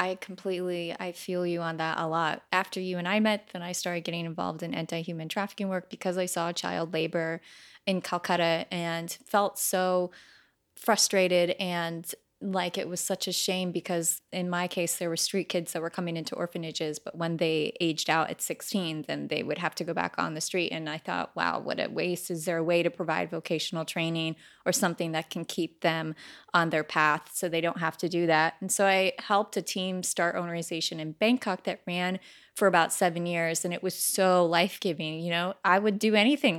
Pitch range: 165-190 Hz